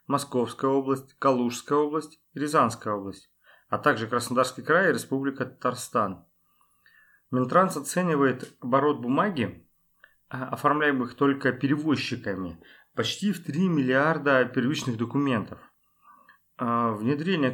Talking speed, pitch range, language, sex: 90 wpm, 120-145 Hz, Russian, male